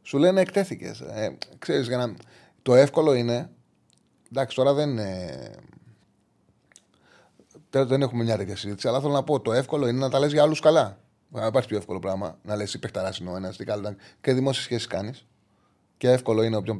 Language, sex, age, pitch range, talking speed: Greek, male, 30-49, 105-150 Hz, 180 wpm